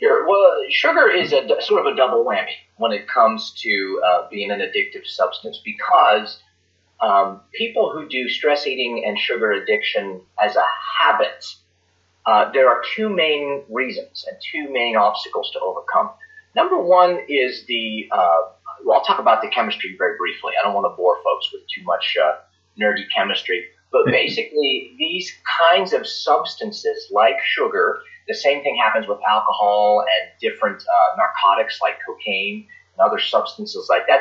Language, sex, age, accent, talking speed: English, male, 30-49, American, 160 wpm